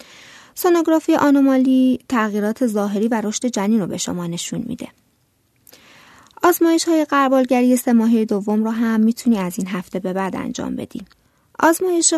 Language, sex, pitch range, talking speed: Persian, female, 195-245 Hz, 140 wpm